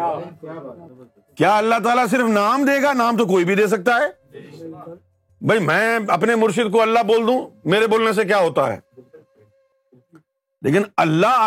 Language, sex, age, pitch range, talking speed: Urdu, male, 50-69, 140-230 Hz, 155 wpm